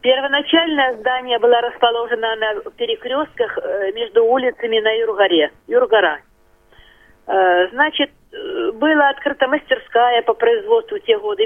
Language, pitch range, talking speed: Russian, 220-325 Hz, 100 wpm